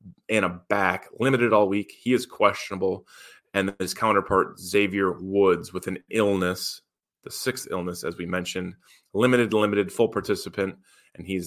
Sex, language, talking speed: male, English, 140 wpm